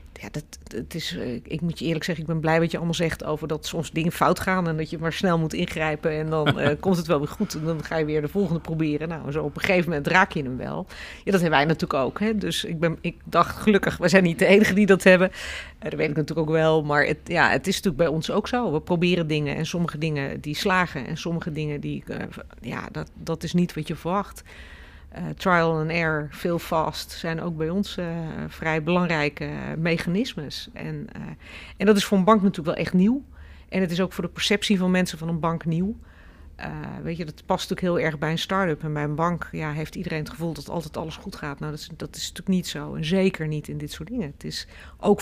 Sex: female